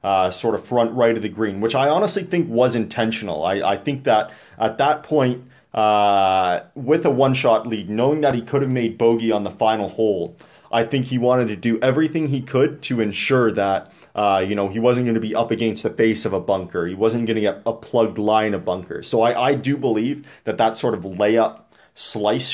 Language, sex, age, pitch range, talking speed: English, male, 30-49, 100-120 Hz, 225 wpm